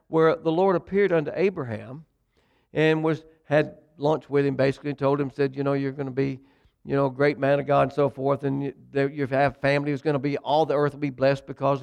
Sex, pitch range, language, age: male, 135-160 Hz, English, 60-79